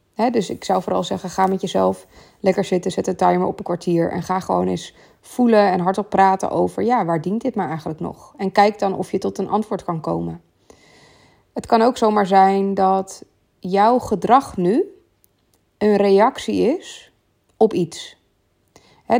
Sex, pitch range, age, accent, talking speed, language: female, 185-225 Hz, 20-39, Dutch, 180 wpm, Dutch